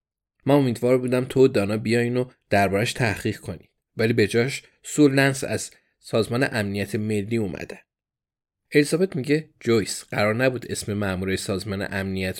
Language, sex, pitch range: Persian, male, 100-130 Hz